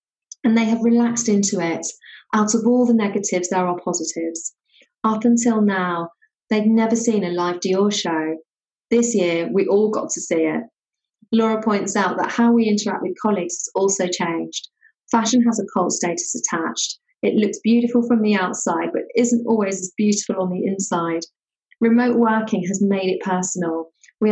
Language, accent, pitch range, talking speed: English, British, 175-220 Hz, 175 wpm